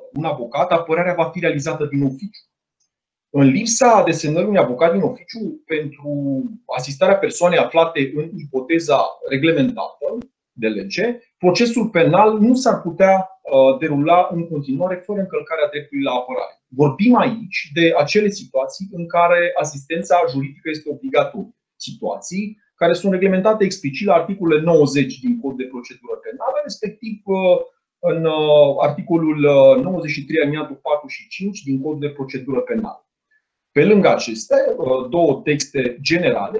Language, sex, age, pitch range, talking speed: Romanian, male, 30-49, 140-200 Hz, 130 wpm